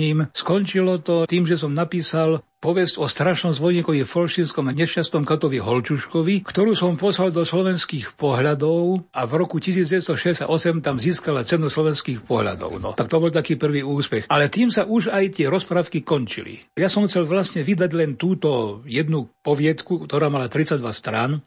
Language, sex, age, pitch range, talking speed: Slovak, male, 60-79, 145-175 Hz, 165 wpm